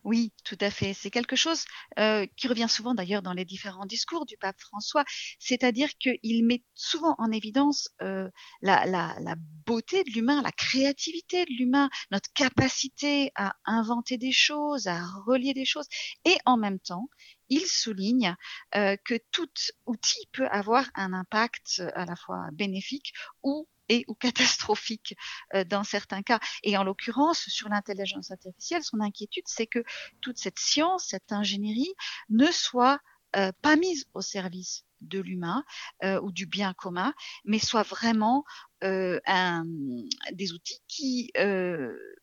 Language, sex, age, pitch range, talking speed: French, female, 40-59, 195-275 Hz, 150 wpm